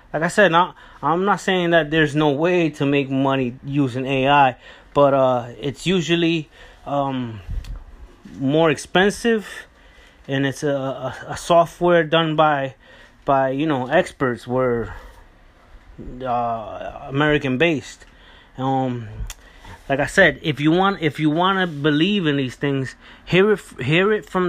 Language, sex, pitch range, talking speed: English, male, 130-170 Hz, 140 wpm